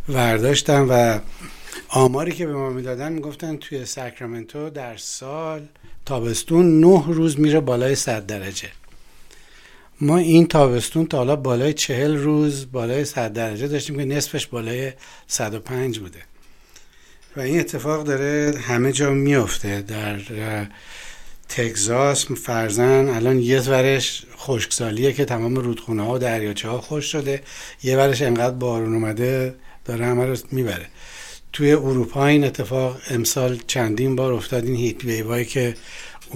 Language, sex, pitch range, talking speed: Persian, male, 115-140 Hz, 125 wpm